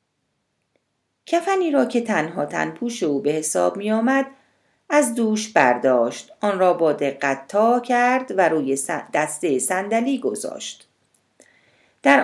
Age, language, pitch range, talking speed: 40-59, Persian, 155-245 Hz, 115 wpm